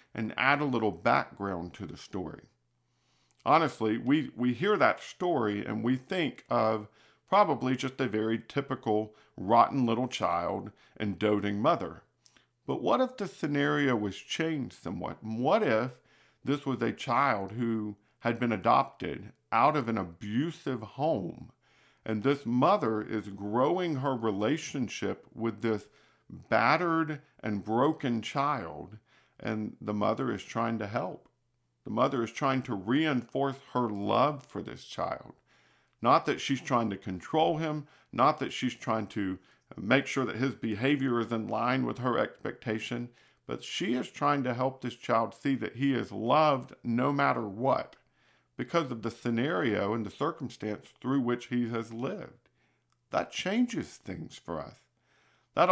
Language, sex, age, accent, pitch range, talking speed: English, male, 50-69, American, 110-140 Hz, 150 wpm